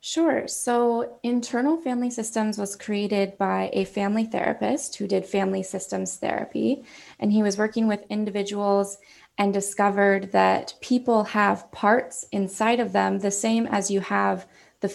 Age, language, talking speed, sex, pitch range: 20-39, English, 150 wpm, female, 195-225 Hz